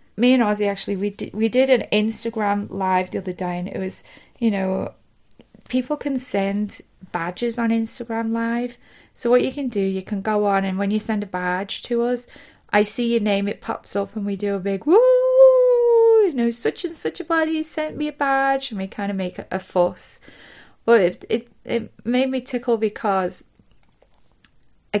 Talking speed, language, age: 195 wpm, English, 30-49